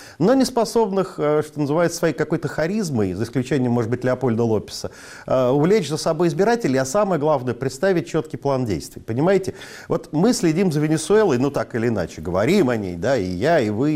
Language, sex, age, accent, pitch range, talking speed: Russian, male, 40-59, native, 125-185 Hz, 185 wpm